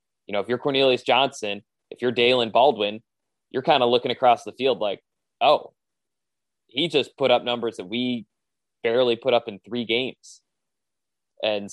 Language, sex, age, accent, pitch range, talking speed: English, male, 20-39, American, 115-145 Hz, 170 wpm